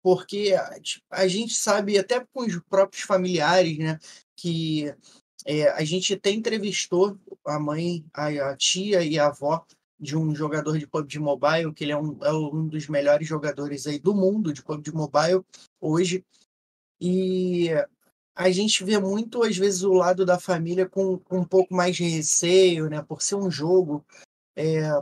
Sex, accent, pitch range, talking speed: male, Brazilian, 155-190 Hz, 175 wpm